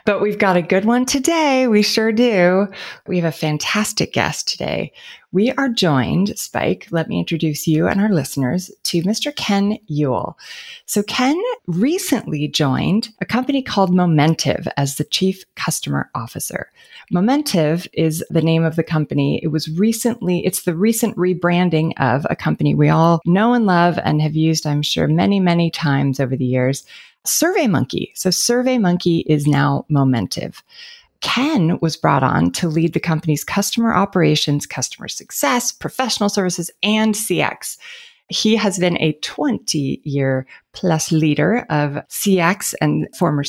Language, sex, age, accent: English, female, 30-49, American